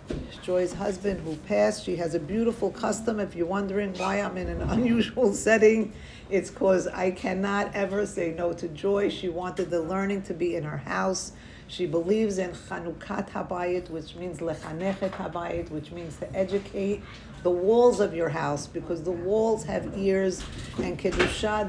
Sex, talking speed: female, 170 wpm